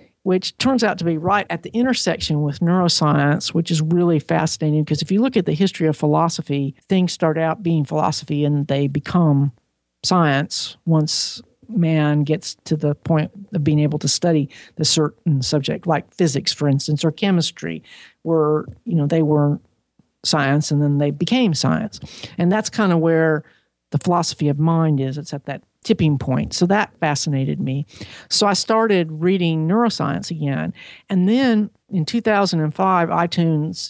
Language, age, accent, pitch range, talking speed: English, 50-69, American, 145-175 Hz, 165 wpm